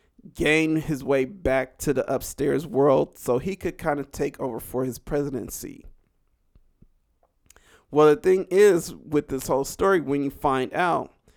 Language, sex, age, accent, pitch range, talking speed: English, male, 40-59, American, 130-155 Hz, 160 wpm